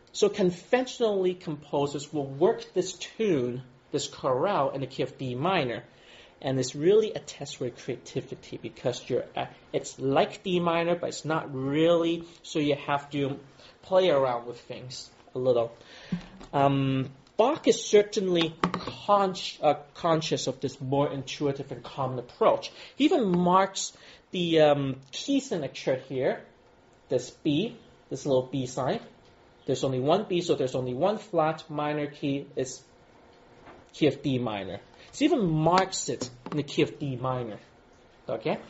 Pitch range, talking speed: 135-190 Hz, 145 wpm